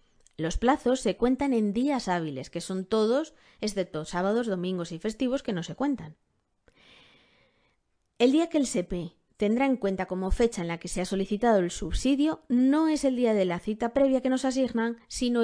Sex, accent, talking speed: female, Spanish, 190 wpm